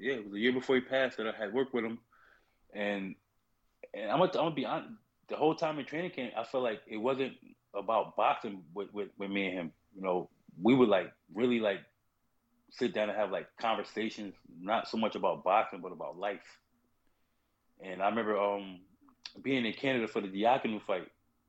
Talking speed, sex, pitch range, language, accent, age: 210 wpm, male, 100-120 Hz, English, American, 20-39